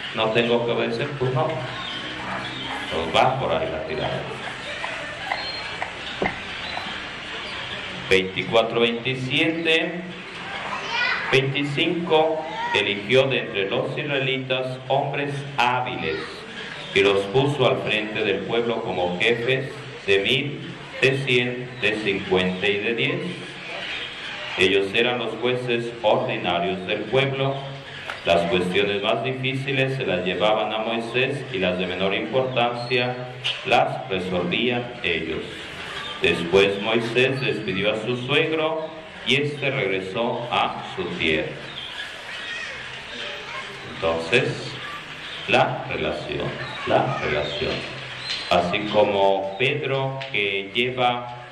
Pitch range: 105-135 Hz